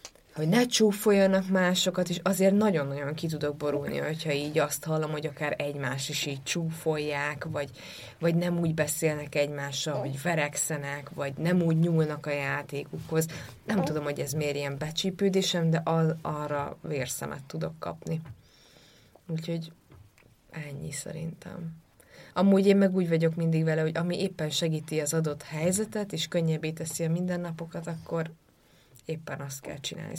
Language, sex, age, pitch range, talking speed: Hungarian, female, 20-39, 145-175 Hz, 145 wpm